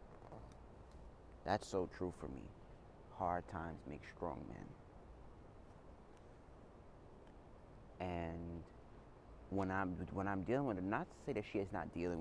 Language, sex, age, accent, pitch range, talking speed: English, male, 30-49, American, 85-110 Hz, 130 wpm